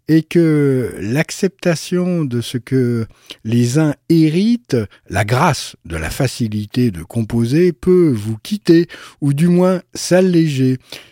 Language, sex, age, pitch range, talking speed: French, male, 50-69, 115-150 Hz, 125 wpm